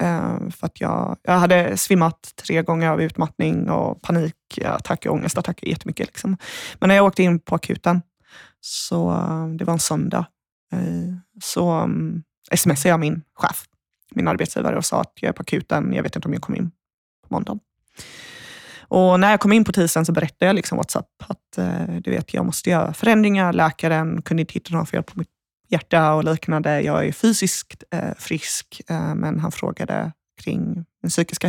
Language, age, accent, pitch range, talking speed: Swedish, 20-39, native, 160-185 Hz, 175 wpm